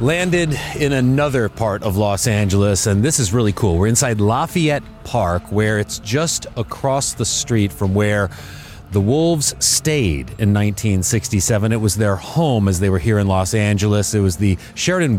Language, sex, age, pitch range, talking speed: English, male, 30-49, 105-135 Hz, 175 wpm